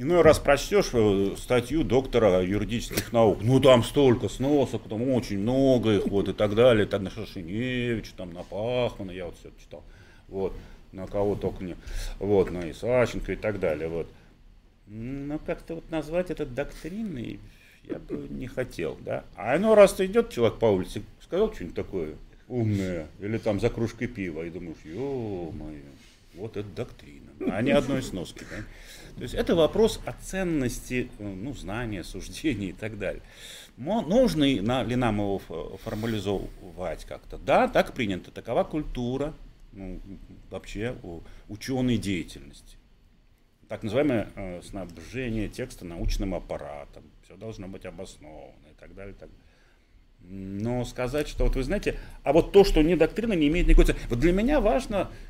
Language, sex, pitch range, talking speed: Russian, male, 100-140 Hz, 155 wpm